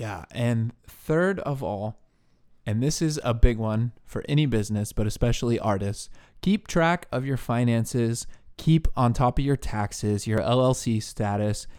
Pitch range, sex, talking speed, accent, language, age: 105-130 Hz, male, 160 wpm, American, English, 20-39